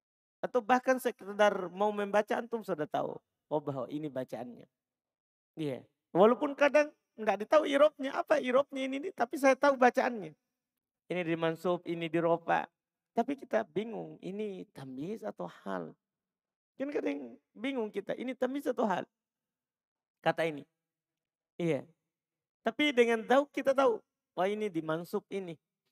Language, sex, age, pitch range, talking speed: Indonesian, male, 40-59, 180-250 Hz, 145 wpm